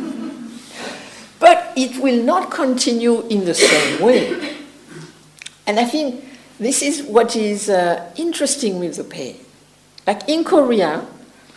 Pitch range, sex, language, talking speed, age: 175-260 Hz, female, English, 125 wpm, 60-79